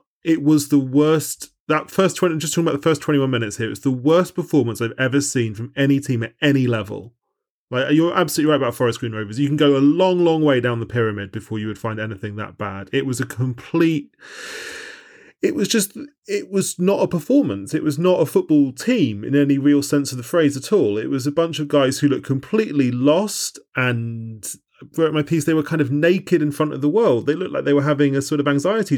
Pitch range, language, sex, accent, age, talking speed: 130-175 Hz, English, male, British, 30-49, 240 wpm